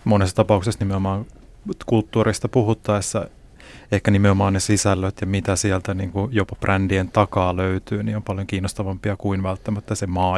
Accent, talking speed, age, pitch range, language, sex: native, 145 wpm, 30-49, 95-110 Hz, Finnish, male